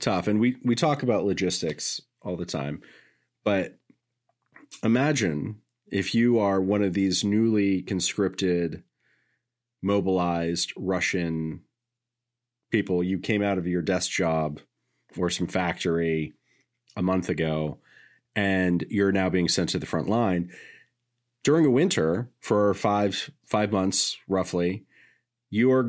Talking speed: 125 wpm